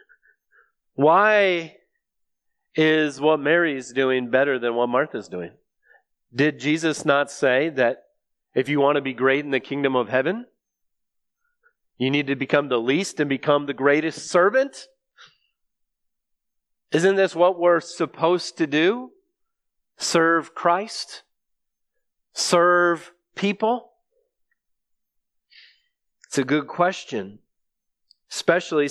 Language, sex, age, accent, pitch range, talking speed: English, male, 30-49, American, 150-195 Hz, 110 wpm